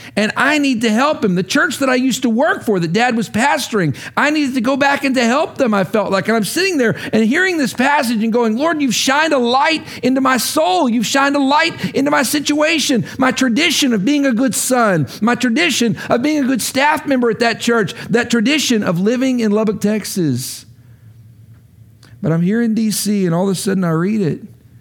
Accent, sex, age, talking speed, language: American, male, 50-69, 225 wpm, English